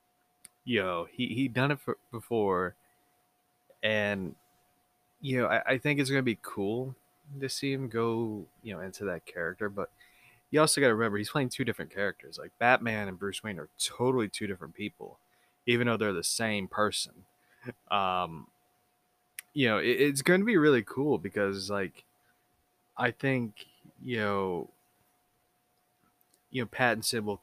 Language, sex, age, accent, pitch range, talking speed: English, male, 20-39, American, 95-120 Hz, 155 wpm